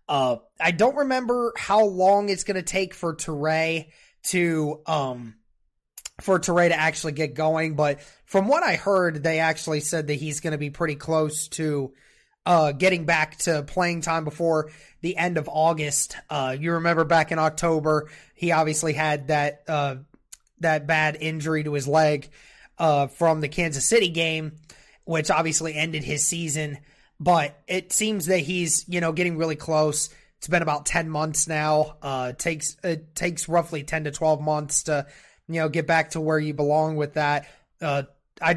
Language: English